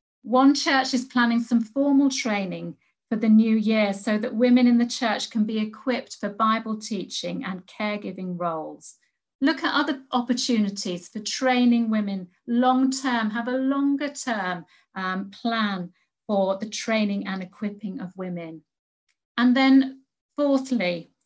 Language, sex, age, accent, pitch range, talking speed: English, female, 50-69, British, 190-255 Hz, 145 wpm